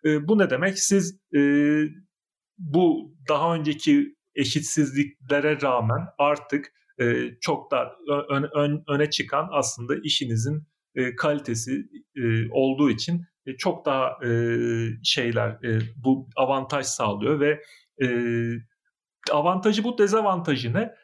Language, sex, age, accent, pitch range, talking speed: Turkish, male, 40-59, native, 130-160 Hz, 110 wpm